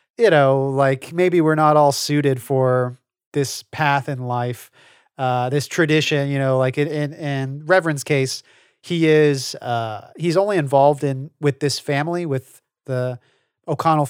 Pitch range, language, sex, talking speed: 130-155 Hz, English, male, 155 wpm